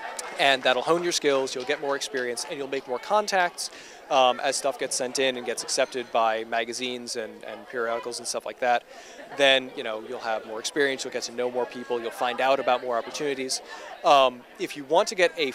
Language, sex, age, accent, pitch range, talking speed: English, male, 20-39, American, 120-145 Hz, 215 wpm